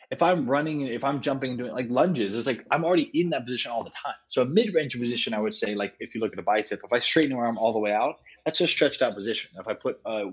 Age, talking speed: 20-39, 300 wpm